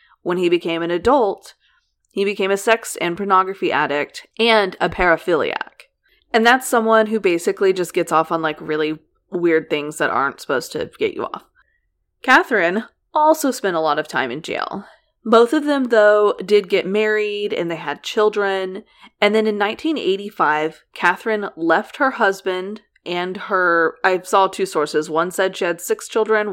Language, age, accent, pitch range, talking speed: English, 20-39, American, 170-225 Hz, 170 wpm